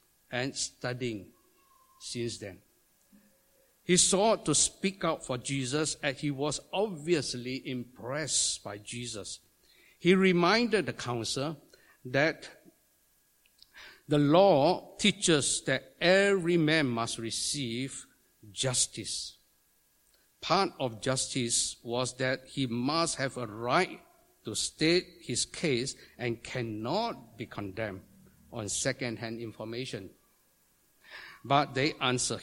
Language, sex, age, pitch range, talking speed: English, male, 60-79, 125-185 Hz, 105 wpm